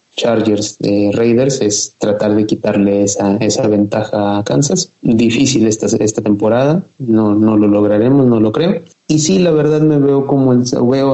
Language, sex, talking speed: Spanish, male, 170 wpm